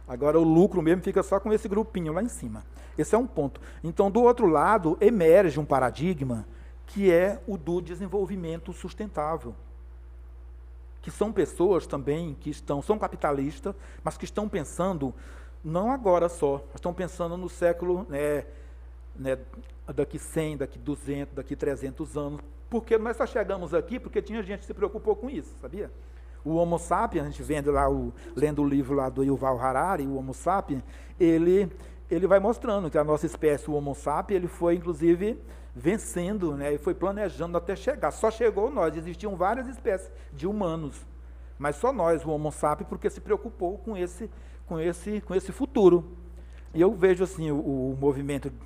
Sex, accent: male, Brazilian